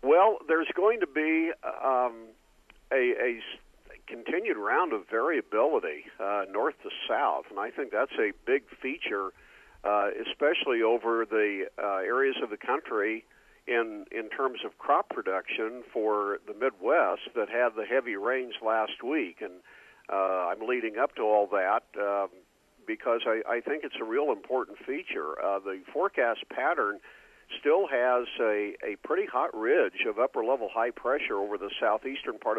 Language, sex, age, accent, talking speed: English, male, 50-69, American, 160 wpm